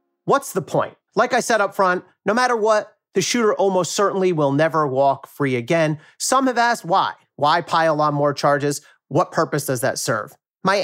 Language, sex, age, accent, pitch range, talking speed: English, male, 40-59, American, 140-185 Hz, 195 wpm